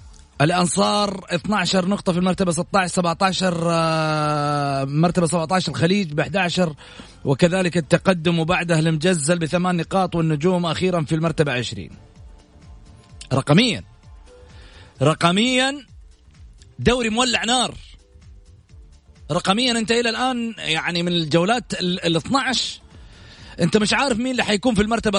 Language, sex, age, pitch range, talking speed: English, male, 30-49, 150-215 Hz, 105 wpm